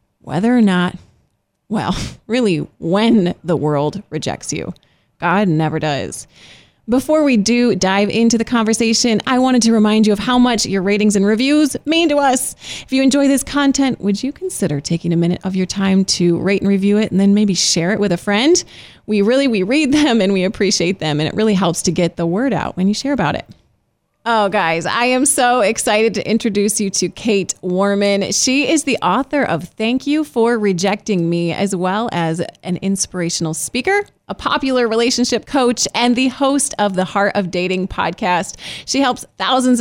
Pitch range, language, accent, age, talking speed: 185-250 Hz, English, American, 30-49, 195 wpm